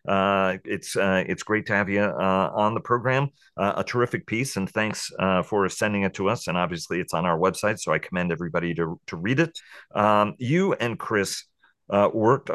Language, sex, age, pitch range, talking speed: English, male, 40-59, 90-110 Hz, 210 wpm